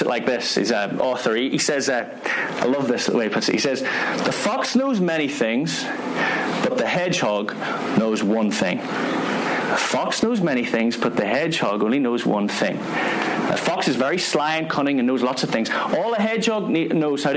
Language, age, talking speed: English, 30-49, 195 wpm